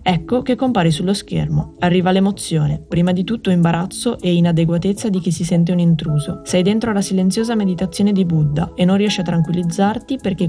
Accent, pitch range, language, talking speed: native, 165-200 Hz, Italian, 185 wpm